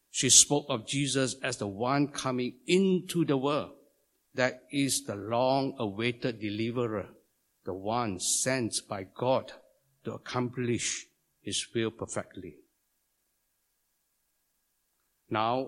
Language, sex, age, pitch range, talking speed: English, male, 60-79, 115-160 Hz, 105 wpm